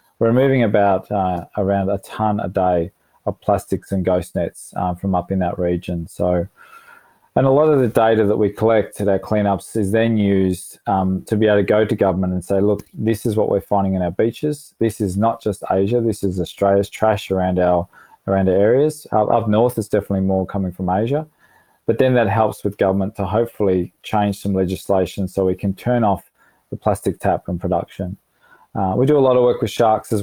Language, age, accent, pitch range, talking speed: English, 20-39, Australian, 95-110 Hz, 215 wpm